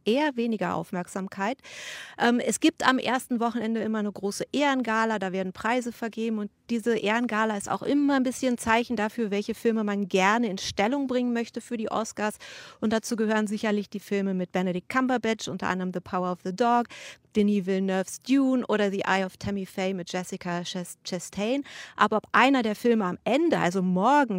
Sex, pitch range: female, 195-240 Hz